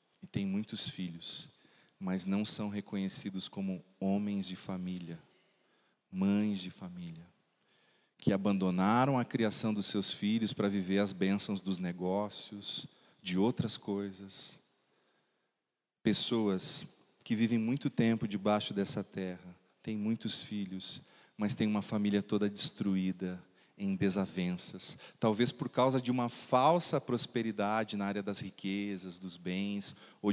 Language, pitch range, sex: Portuguese, 95-110 Hz, male